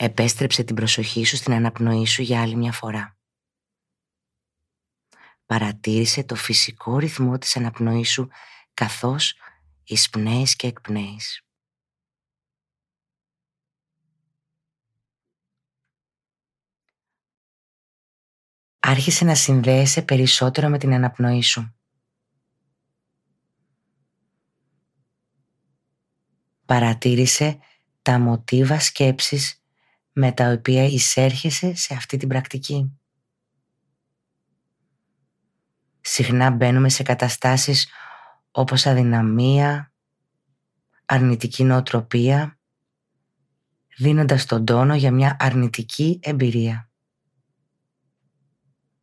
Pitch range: 120-140 Hz